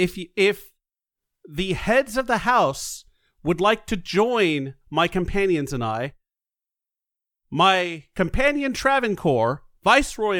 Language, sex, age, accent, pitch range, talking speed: English, male, 40-59, American, 140-200 Hz, 115 wpm